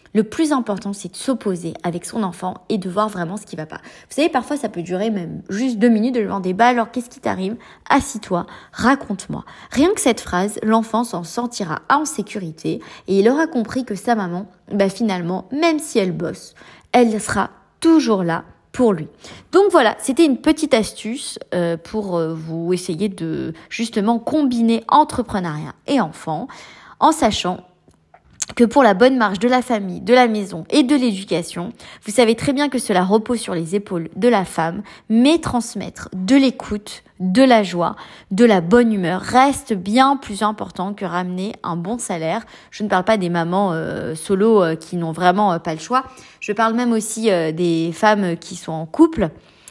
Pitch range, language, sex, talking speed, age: 180-245 Hz, French, female, 190 wpm, 30-49